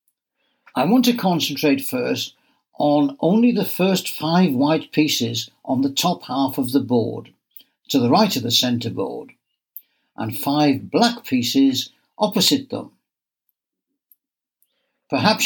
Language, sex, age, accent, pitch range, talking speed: English, male, 60-79, British, 130-215 Hz, 130 wpm